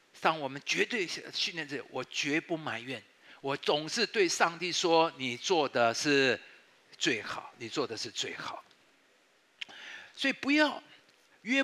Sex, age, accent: male, 50-69, native